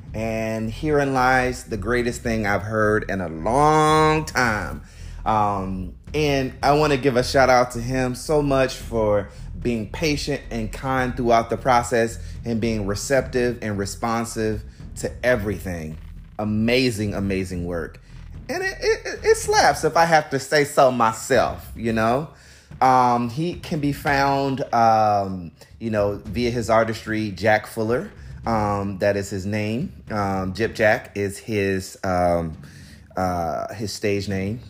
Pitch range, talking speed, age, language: 95-130 Hz, 145 wpm, 30-49, English